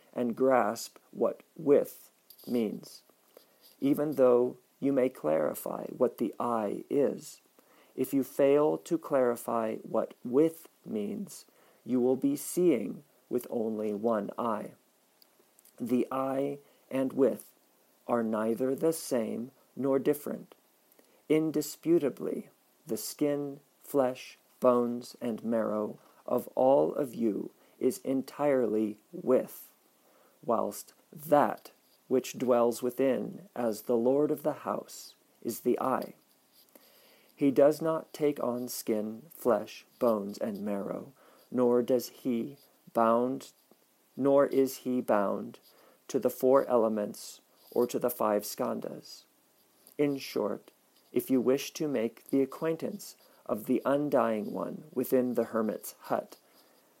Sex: male